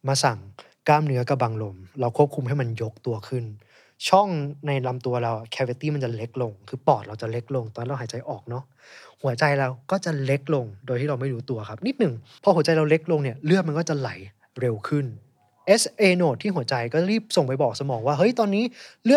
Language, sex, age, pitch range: Thai, male, 20-39, 115-155 Hz